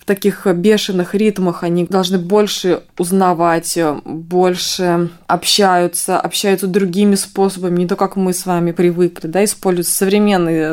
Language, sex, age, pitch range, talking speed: Russian, female, 20-39, 190-230 Hz, 125 wpm